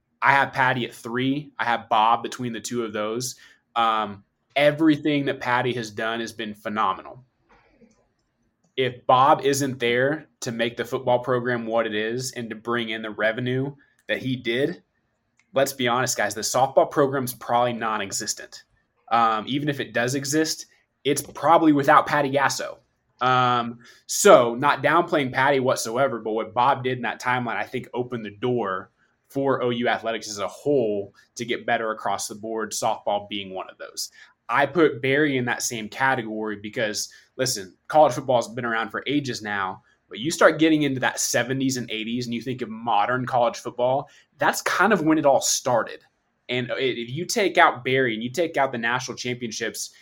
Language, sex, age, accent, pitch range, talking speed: English, male, 20-39, American, 115-135 Hz, 180 wpm